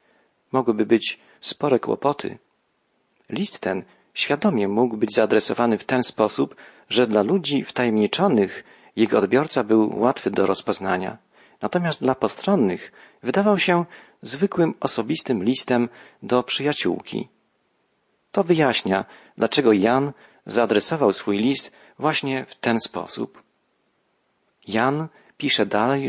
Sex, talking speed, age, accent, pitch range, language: male, 110 wpm, 40-59, native, 115-150 Hz, Polish